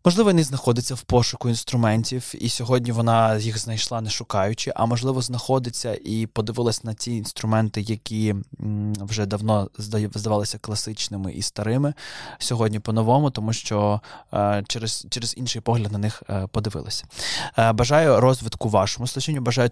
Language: Ukrainian